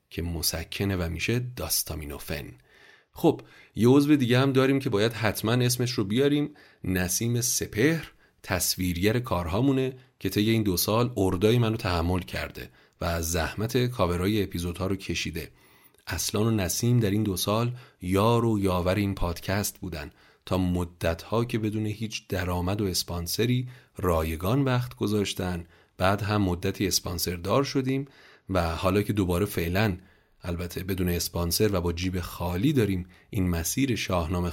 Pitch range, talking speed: 90-115 Hz, 150 wpm